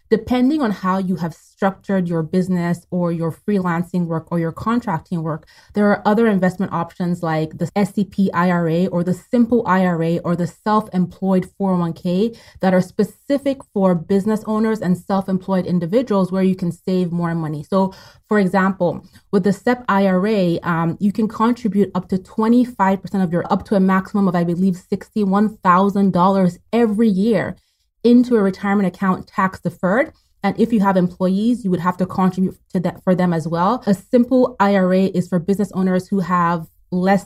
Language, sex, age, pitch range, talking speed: English, female, 30-49, 175-205 Hz, 170 wpm